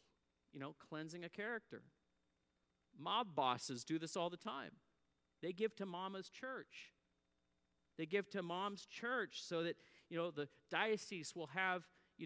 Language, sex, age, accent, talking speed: English, male, 40-59, American, 150 wpm